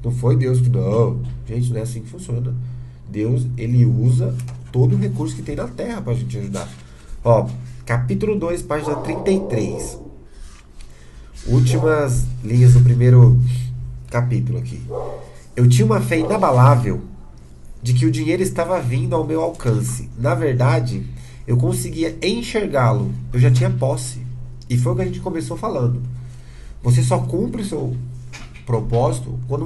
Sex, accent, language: male, Brazilian, Portuguese